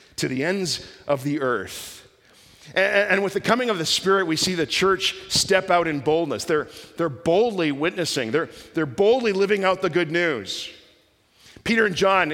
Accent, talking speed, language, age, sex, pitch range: American, 180 wpm, English, 40-59, male, 140-200 Hz